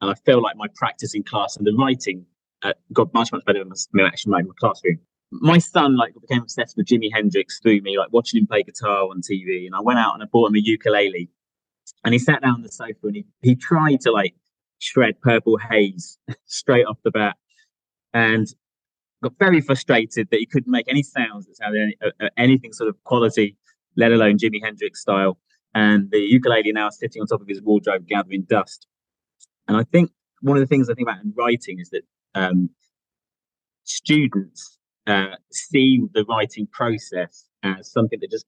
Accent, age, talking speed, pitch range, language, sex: British, 20-39, 200 wpm, 105-135 Hz, English, male